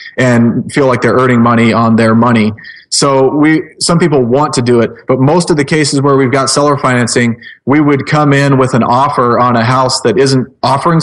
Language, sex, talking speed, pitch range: English, male, 220 wpm, 120-145 Hz